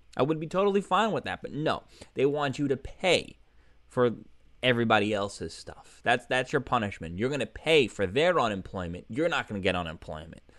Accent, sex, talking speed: American, male, 200 wpm